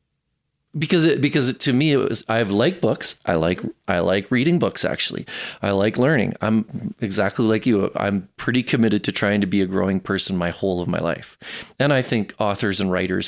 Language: English